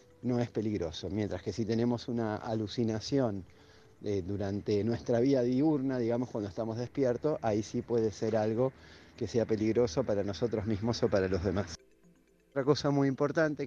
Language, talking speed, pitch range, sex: Spanish, 165 wpm, 110-145 Hz, male